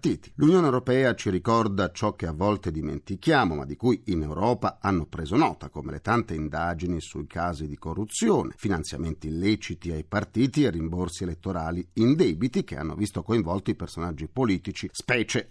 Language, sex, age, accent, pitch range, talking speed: Italian, male, 40-59, native, 95-145 Hz, 165 wpm